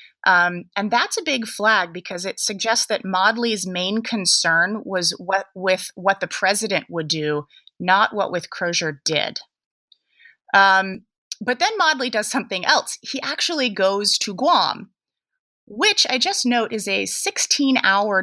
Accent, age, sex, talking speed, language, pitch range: American, 20-39, female, 145 wpm, English, 180-240 Hz